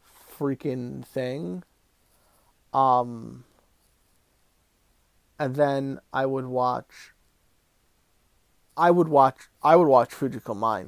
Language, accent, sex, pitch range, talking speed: English, American, male, 115-135 Hz, 90 wpm